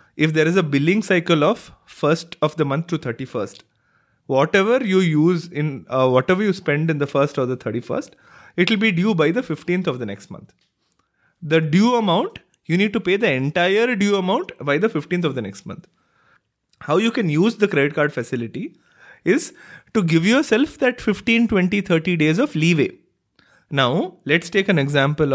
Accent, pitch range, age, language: Indian, 145-215 Hz, 20-39, English